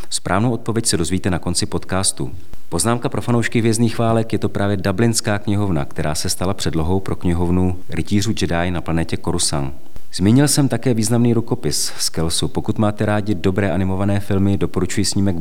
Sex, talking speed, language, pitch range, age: male, 165 wpm, Czech, 85-105 Hz, 40-59